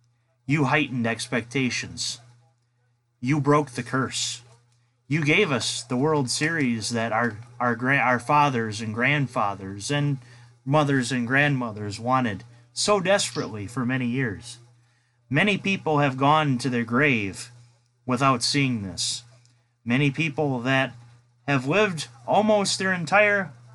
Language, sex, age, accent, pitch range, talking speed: English, male, 30-49, American, 120-145 Hz, 120 wpm